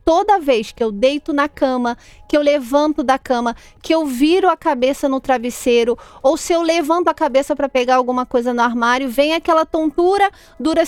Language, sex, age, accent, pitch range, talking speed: Portuguese, female, 30-49, Brazilian, 260-345 Hz, 195 wpm